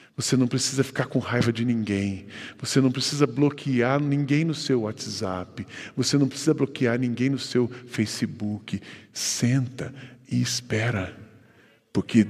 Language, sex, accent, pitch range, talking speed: Portuguese, male, Brazilian, 125-175 Hz, 135 wpm